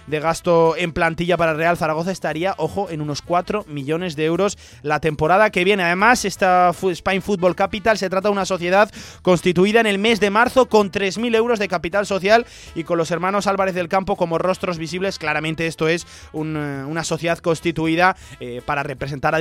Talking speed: 200 wpm